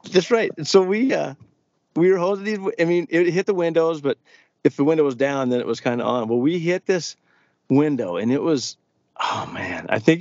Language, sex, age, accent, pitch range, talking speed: English, male, 50-69, American, 125-160 Hz, 235 wpm